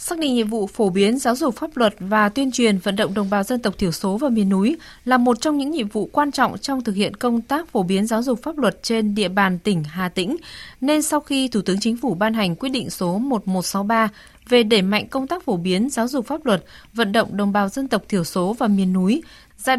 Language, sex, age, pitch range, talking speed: Vietnamese, female, 20-39, 195-250 Hz, 260 wpm